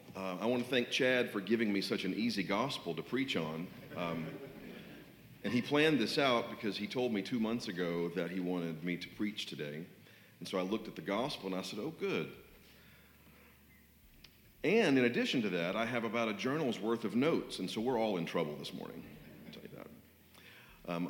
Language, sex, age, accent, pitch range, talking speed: English, male, 40-59, American, 85-110 Hz, 210 wpm